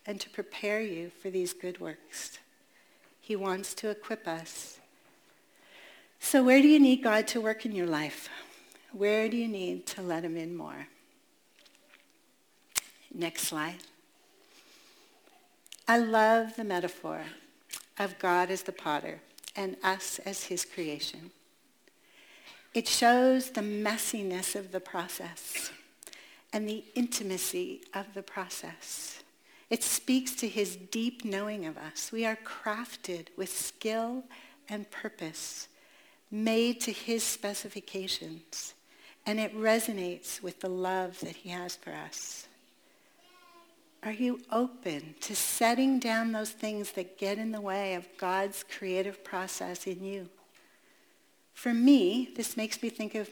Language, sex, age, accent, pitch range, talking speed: English, female, 60-79, American, 190-270 Hz, 135 wpm